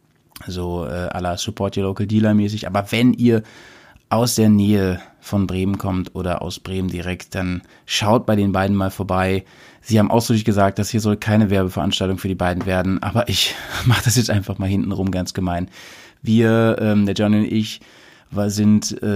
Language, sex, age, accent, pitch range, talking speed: German, male, 30-49, German, 100-115 Hz, 185 wpm